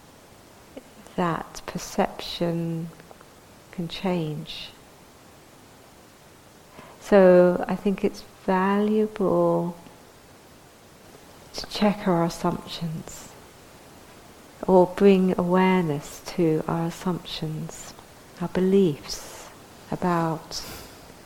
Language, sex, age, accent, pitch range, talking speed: English, female, 50-69, British, 160-185 Hz, 60 wpm